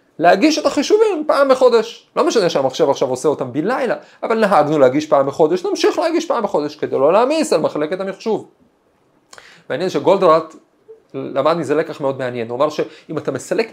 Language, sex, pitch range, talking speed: Hebrew, male, 150-235 Hz, 165 wpm